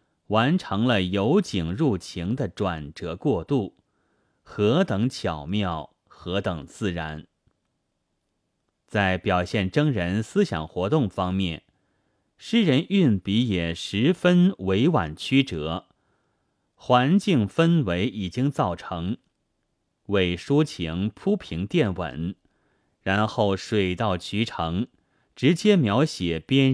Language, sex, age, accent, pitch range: Chinese, male, 30-49, native, 90-150 Hz